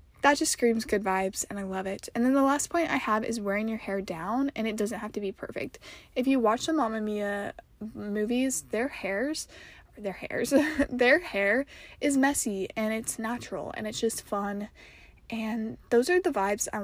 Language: English